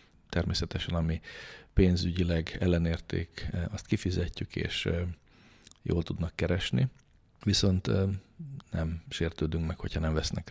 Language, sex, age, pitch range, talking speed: Hungarian, male, 40-59, 80-100 Hz, 95 wpm